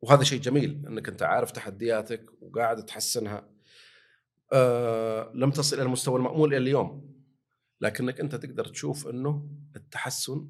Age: 40-59